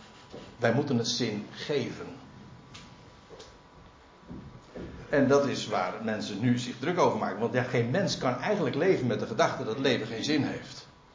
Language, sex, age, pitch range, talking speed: Dutch, male, 60-79, 125-185 Hz, 165 wpm